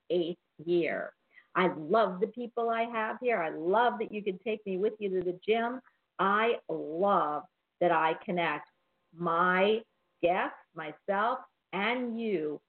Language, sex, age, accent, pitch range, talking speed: English, female, 50-69, American, 170-210 Hz, 145 wpm